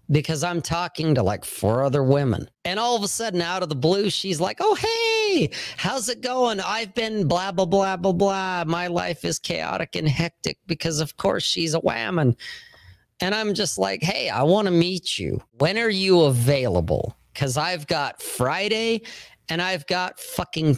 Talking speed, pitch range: 185 wpm, 120-180 Hz